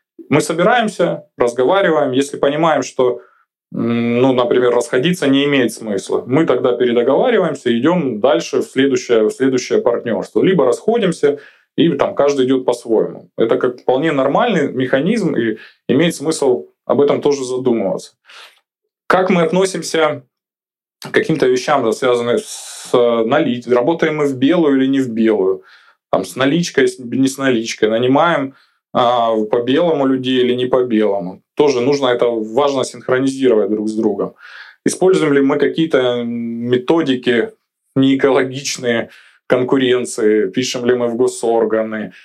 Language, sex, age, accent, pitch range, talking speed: Russian, male, 20-39, native, 120-145 Hz, 130 wpm